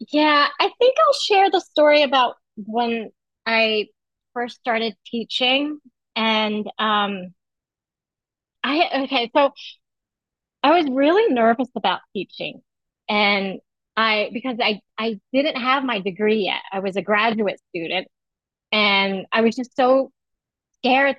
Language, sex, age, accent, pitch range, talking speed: English, female, 30-49, American, 210-270 Hz, 125 wpm